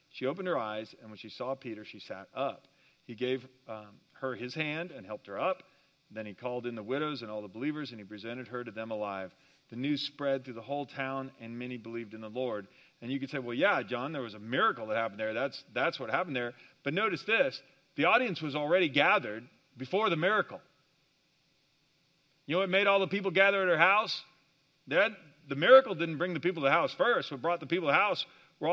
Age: 50-69